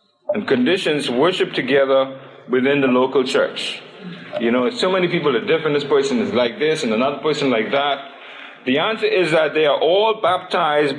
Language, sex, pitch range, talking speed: English, male, 135-190 Hz, 180 wpm